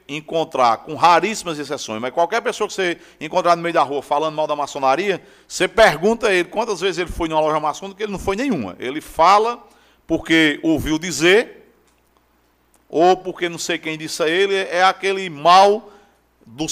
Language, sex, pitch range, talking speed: Portuguese, male, 155-205 Hz, 185 wpm